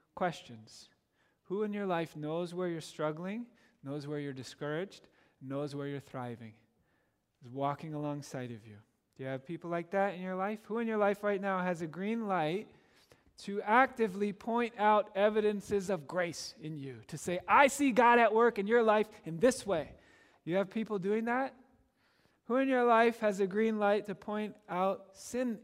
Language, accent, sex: English, American, male